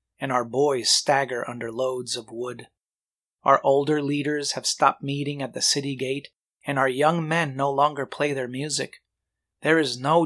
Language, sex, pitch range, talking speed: English, male, 130-160 Hz, 175 wpm